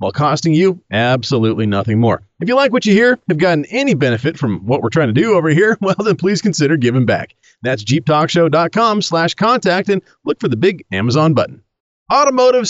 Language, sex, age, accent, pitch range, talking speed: English, male, 40-59, American, 130-200 Hz, 195 wpm